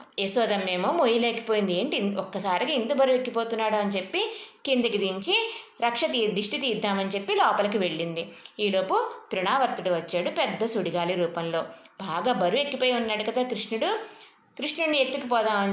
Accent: native